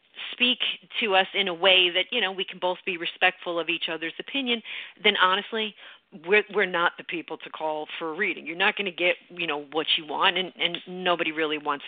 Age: 40-59